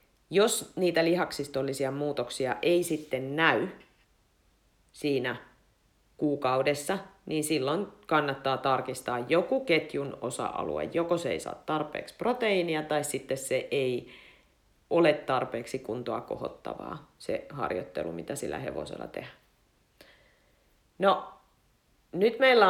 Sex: female